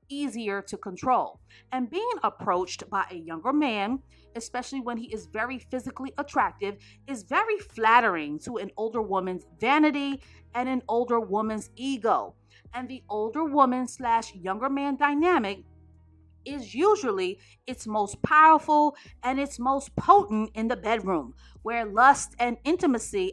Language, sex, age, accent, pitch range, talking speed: English, female, 40-59, American, 215-285 Hz, 140 wpm